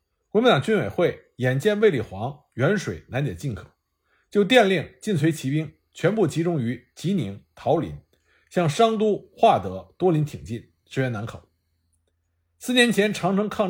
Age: 50-69